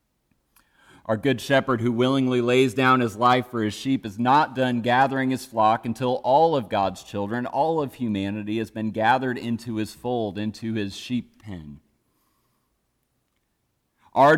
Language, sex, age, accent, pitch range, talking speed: English, male, 30-49, American, 105-130 Hz, 155 wpm